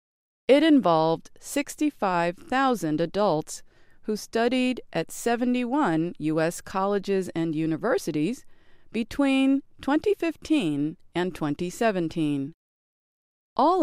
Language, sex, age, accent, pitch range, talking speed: English, female, 40-59, American, 160-255 Hz, 75 wpm